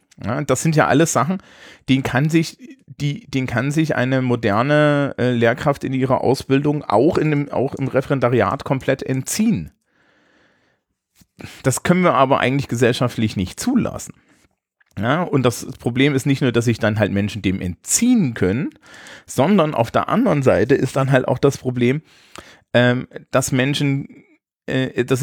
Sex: male